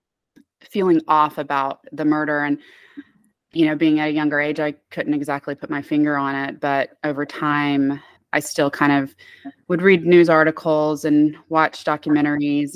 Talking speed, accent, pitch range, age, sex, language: 165 wpm, American, 145-160 Hz, 20-39, female, English